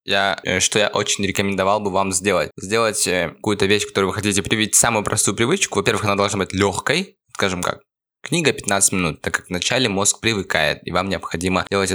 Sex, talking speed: male, 180 wpm